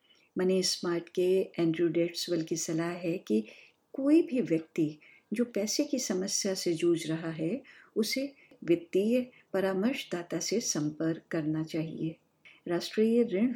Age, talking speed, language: 50-69, 130 wpm, Hindi